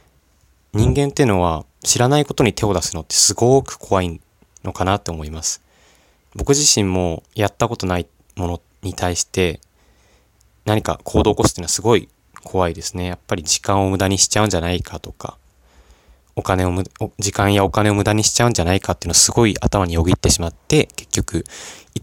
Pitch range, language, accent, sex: 85-110 Hz, Japanese, native, male